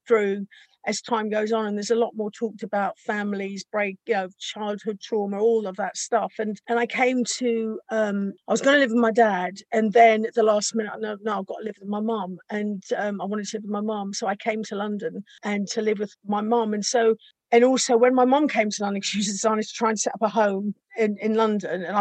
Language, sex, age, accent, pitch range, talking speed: English, female, 50-69, British, 210-235 Hz, 260 wpm